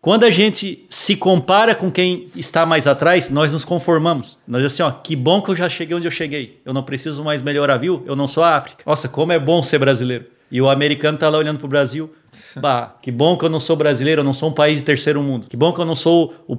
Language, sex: Portuguese, male